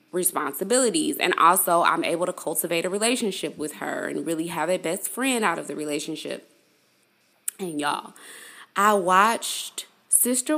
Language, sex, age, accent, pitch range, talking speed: English, female, 20-39, American, 170-250 Hz, 145 wpm